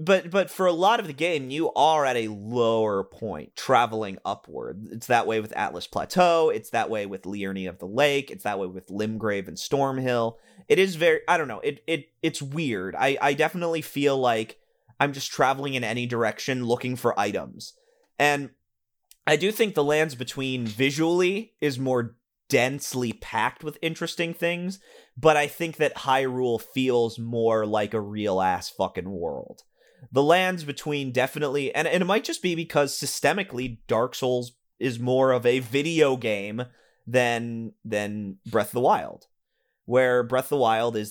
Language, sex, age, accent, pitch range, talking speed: English, male, 30-49, American, 115-150 Hz, 175 wpm